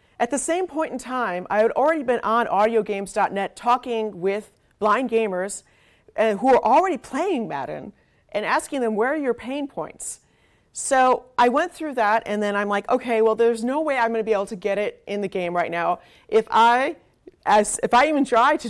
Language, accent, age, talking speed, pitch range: English, American, 40-59, 205 wpm, 200-280 Hz